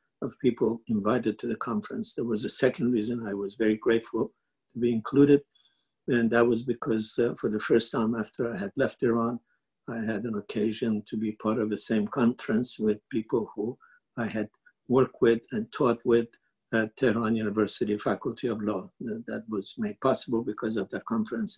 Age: 60-79